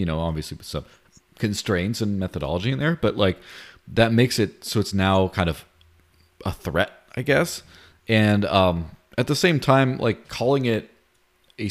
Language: English